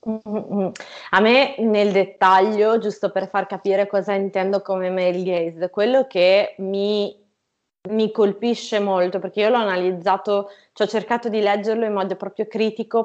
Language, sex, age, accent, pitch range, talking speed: Italian, female, 20-39, native, 190-230 Hz, 145 wpm